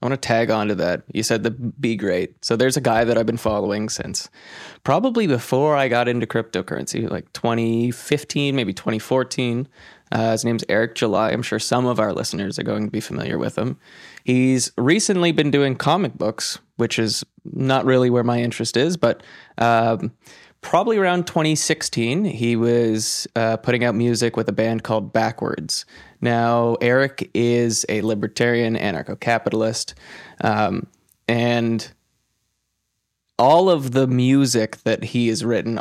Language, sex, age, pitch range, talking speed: English, male, 20-39, 115-135 Hz, 155 wpm